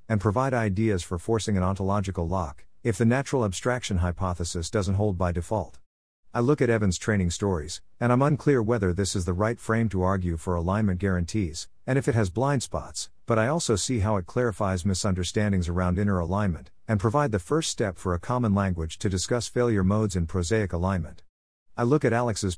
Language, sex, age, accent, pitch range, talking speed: English, male, 50-69, American, 90-115 Hz, 195 wpm